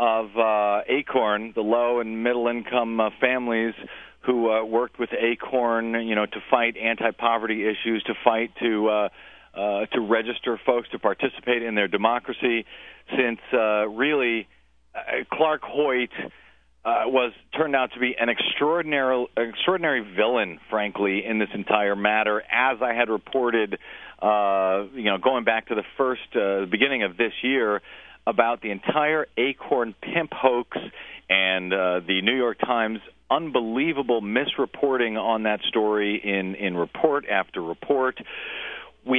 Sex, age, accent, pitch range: male, 40-59, American, 105-125 Hz